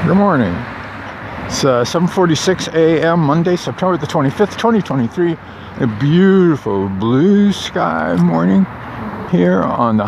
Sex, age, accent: male, 50-69, American